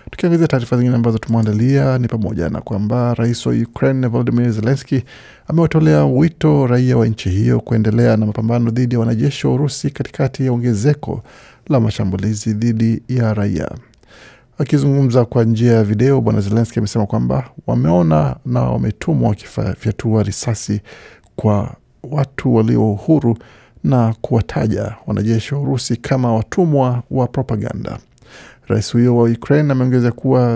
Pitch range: 110-130 Hz